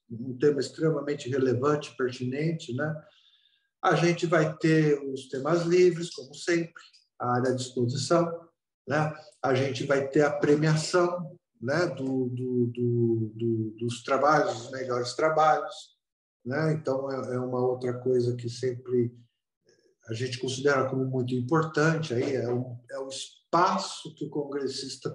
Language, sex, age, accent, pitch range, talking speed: Portuguese, male, 50-69, Brazilian, 125-160 Hz, 145 wpm